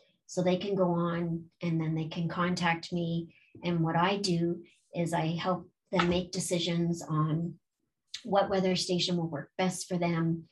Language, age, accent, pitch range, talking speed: English, 40-59, American, 165-180 Hz, 170 wpm